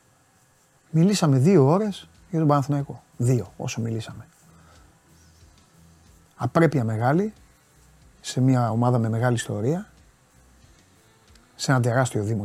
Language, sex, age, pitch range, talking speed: Greek, male, 30-49, 110-135 Hz, 100 wpm